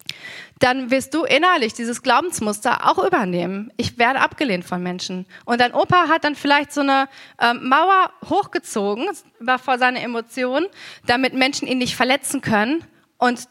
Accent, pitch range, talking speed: German, 230-290 Hz, 155 wpm